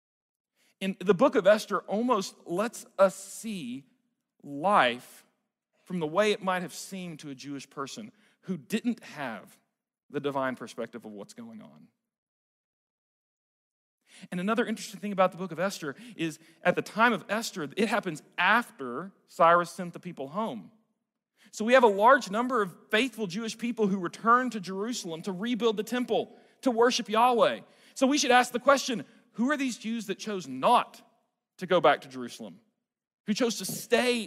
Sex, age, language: male, 40-59, English